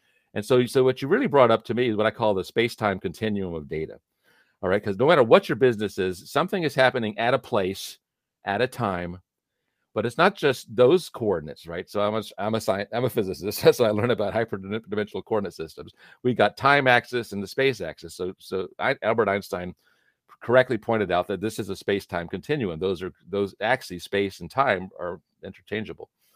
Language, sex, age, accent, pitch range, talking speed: English, male, 50-69, American, 95-125 Hz, 215 wpm